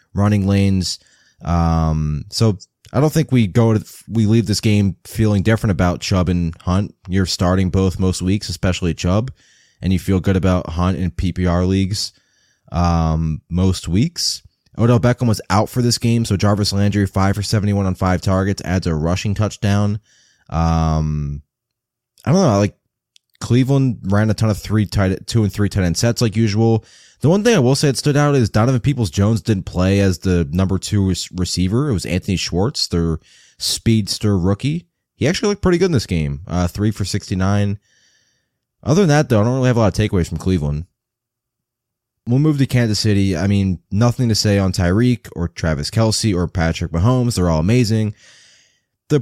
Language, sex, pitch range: English, male, 90-115 Hz